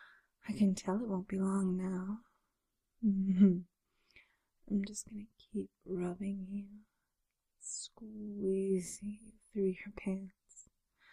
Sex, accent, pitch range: female, American, 190-225 Hz